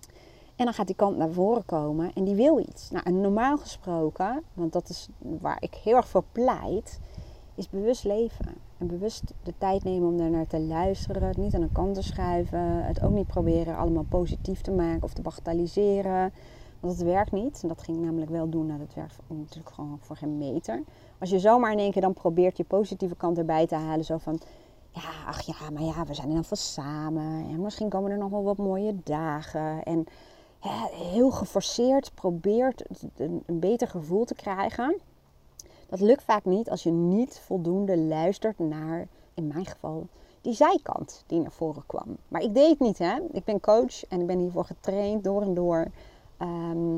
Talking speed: 205 wpm